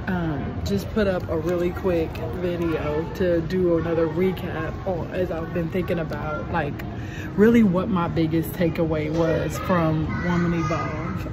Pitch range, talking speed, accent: 160-180 Hz, 145 wpm, American